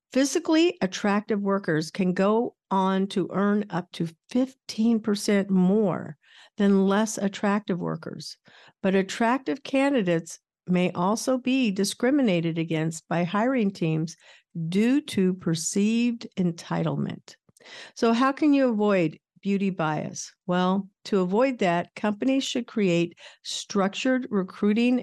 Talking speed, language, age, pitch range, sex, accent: 115 wpm, English, 50-69, 175-230 Hz, female, American